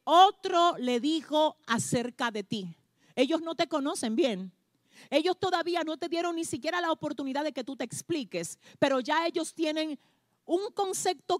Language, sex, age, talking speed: Spanish, female, 40-59, 165 wpm